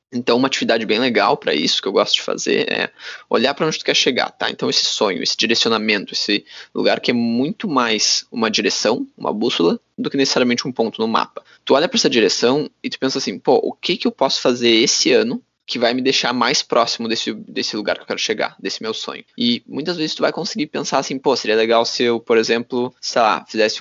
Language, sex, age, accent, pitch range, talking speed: Portuguese, male, 20-39, Brazilian, 115-135 Hz, 235 wpm